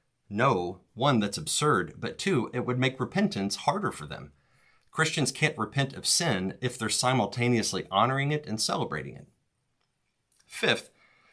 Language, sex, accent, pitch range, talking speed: English, male, American, 100-125 Hz, 145 wpm